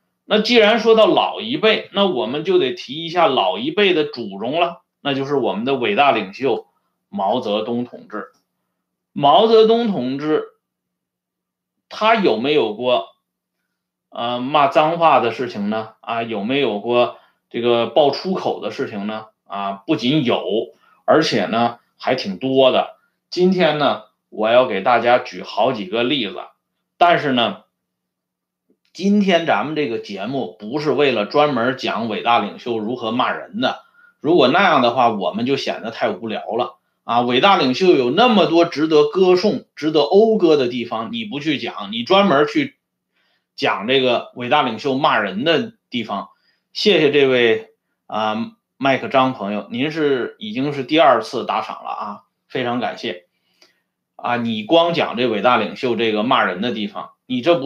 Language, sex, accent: Swedish, male, Chinese